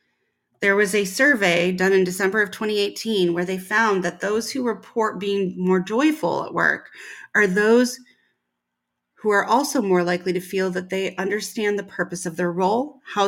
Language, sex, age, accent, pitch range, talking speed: English, female, 30-49, American, 180-210 Hz, 175 wpm